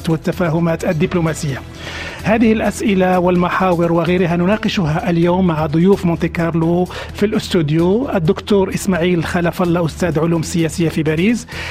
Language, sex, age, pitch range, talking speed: Arabic, male, 40-59, 170-205 Hz, 115 wpm